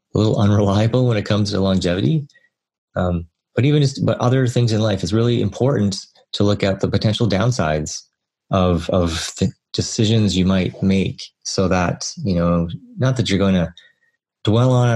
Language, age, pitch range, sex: English, 30-49, 100-130 Hz, male